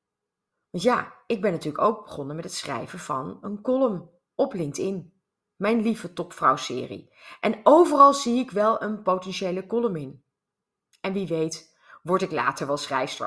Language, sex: Dutch, female